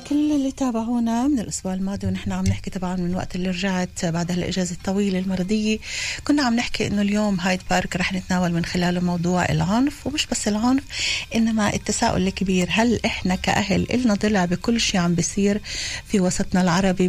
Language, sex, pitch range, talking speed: Hebrew, female, 185-225 Hz, 170 wpm